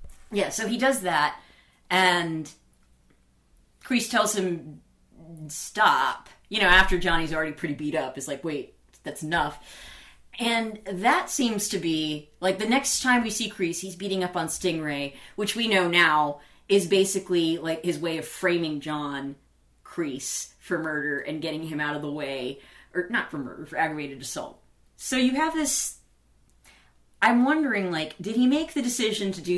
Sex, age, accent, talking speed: female, 30-49, American, 170 wpm